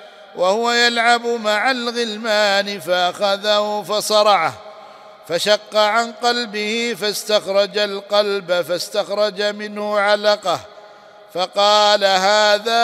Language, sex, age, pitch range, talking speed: Arabic, male, 50-69, 200-215 Hz, 75 wpm